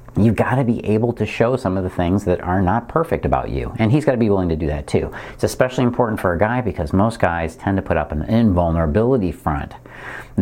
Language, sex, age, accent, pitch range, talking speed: English, male, 50-69, American, 80-110 Hz, 255 wpm